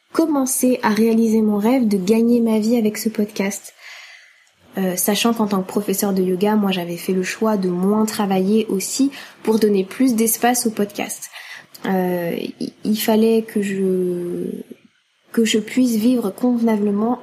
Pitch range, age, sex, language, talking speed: 205-240 Hz, 10-29, female, French, 155 wpm